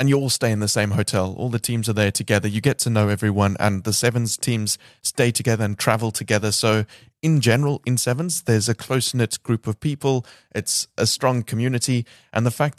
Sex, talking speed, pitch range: male, 215 wpm, 105-125 Hz